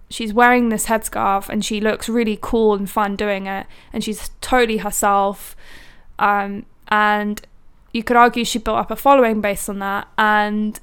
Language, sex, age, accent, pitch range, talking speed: English, female, 10-29, British, 200-230 Hz, 170 wpm